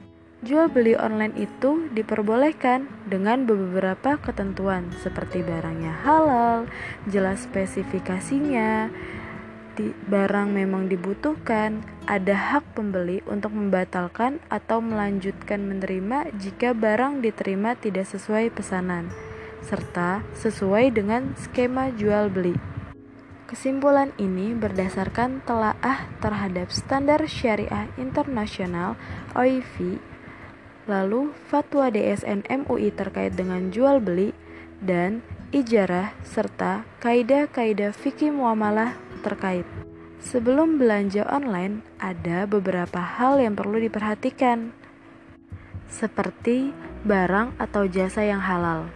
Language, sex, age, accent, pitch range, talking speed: Indonesian, female, 20-39, native, 190-245 Hz, 90 wpm